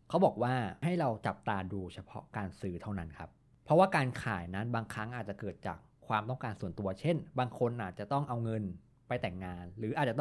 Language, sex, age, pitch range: Thai, male, 20-39, 100-130 Hz